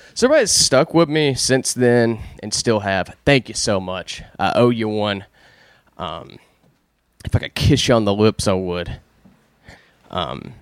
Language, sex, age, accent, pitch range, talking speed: English, male, 20-39, American, 105-140 Hz, 165 wpm